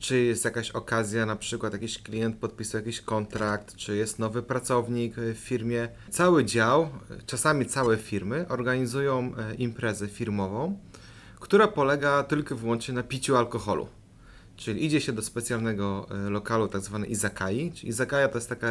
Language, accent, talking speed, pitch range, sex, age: Polish, native, 145 wpm, 105-130 Hz, male, 30-49